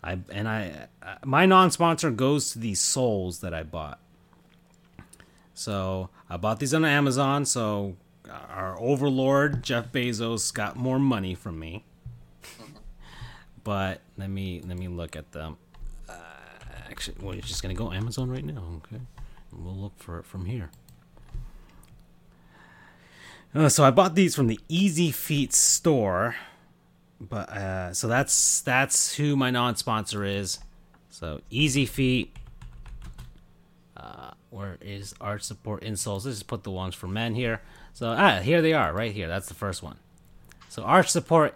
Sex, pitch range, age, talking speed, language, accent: male, 95-145 Hz, 30-49, 155 wpm, English, American